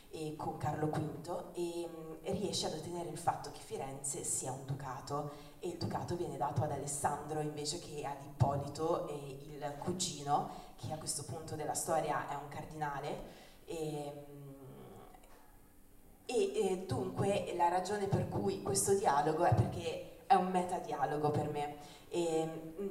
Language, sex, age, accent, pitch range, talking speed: Italian, female, 20-39, native, 145-170 Hz, 150 wpm